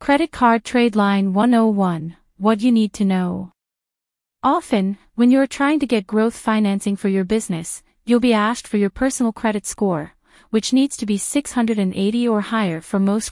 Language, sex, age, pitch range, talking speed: English, female, 30-49, 195-240 Hz, 170 wpm